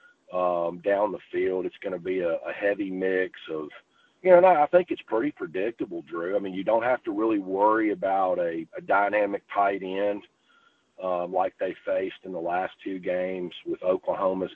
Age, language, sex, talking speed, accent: 40-59, English, male, 200 wpm, American